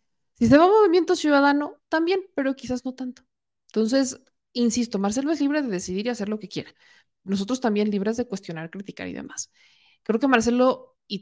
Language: Spanish